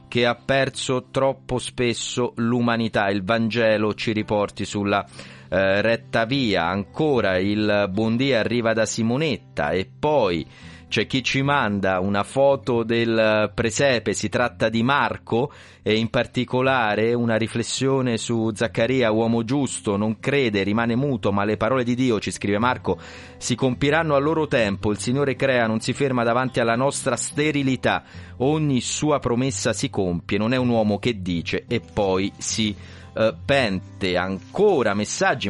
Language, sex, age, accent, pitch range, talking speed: Italian, male, 30-49, native, 100-125 Hz, 145 wpm